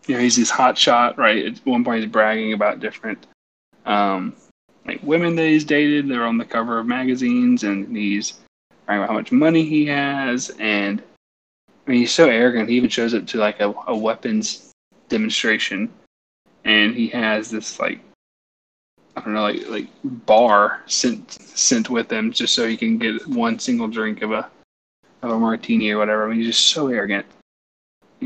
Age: 20-39